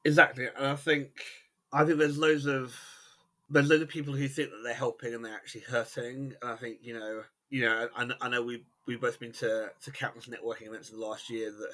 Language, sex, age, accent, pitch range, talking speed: English, male, 30-49, British, 110-130 Hz, 235 wpm